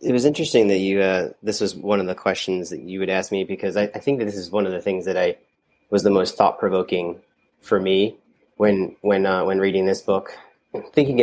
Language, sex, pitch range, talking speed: English, male, 95-110 Hz, 240 wpm